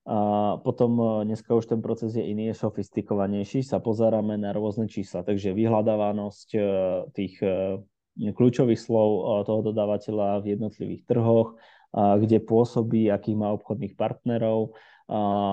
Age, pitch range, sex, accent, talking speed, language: 20-39, 100-110 Hz, male, native, 125 wpm, Czech